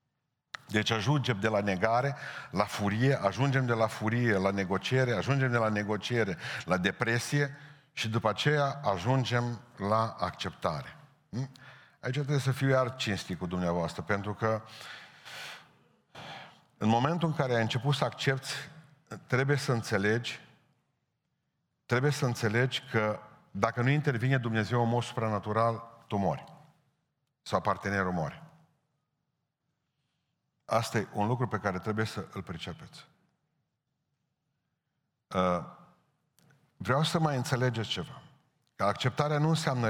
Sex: male